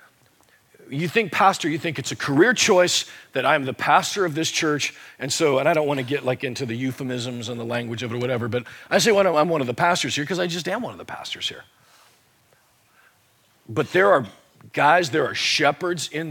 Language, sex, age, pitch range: English, male, 40-59, 115-145 Hz